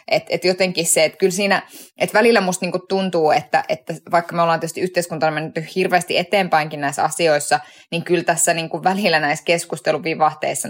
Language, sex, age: Finnish, female, 20-39